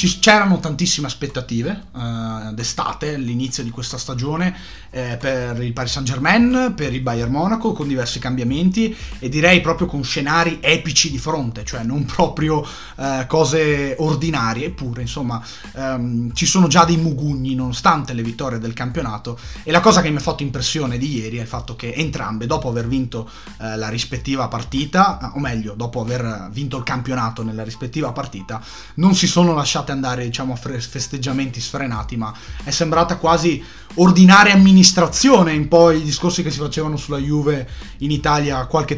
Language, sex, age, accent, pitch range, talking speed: Italian, male, 30-49, native, 125-165 Hz, 165 wpm